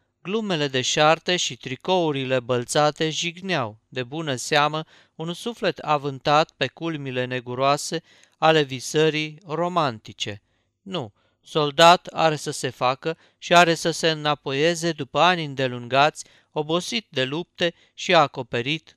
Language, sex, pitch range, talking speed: Romanian, male, 135-170 Hz, 120 wpm